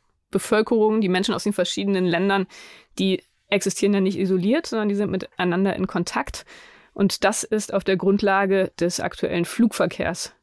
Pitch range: 185-220 Hz